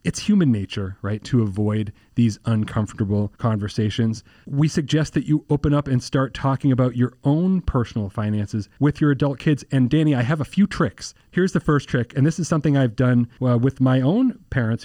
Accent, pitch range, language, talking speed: American, 115-150 Hz, English, 200 wpm